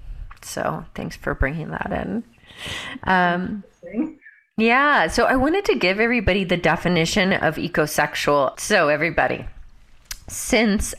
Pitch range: 150-190 Hz